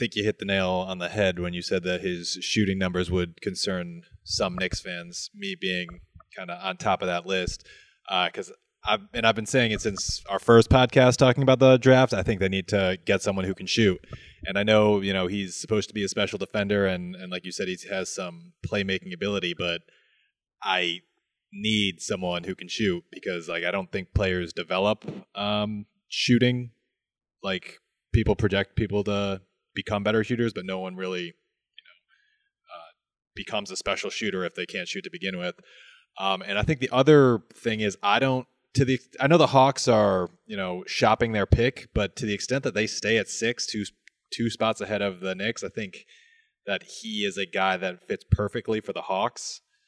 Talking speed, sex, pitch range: 205 wpm, male, 95-120 Hz